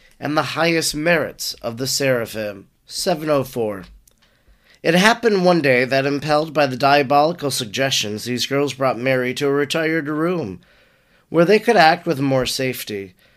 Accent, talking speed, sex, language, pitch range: American, 150 wpm, male, English, 140-175 Hz